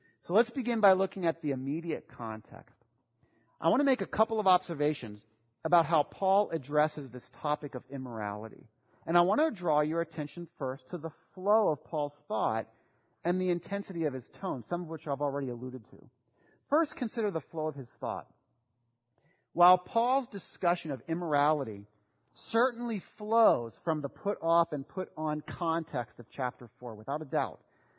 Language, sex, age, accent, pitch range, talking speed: English, male, 40-59, American, 130-190 Hz, 165 wpm